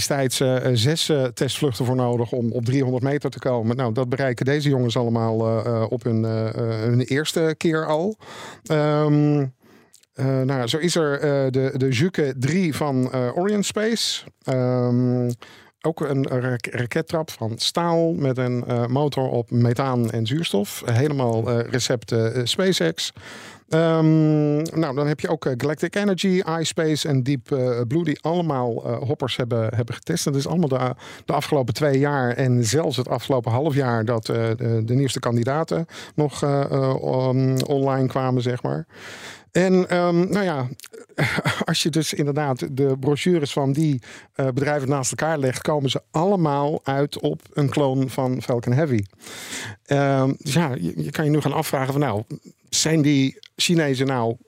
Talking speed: 155 wpm